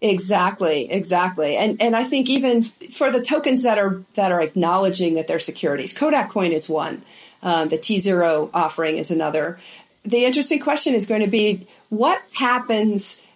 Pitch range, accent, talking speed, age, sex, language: 175-235 Hz, American, 170 wpm, 40-59, female, English